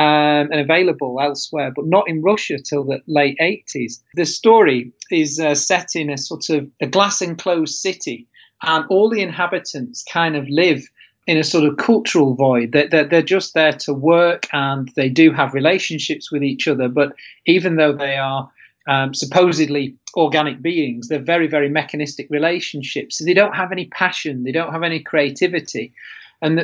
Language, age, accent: English, 40-59, British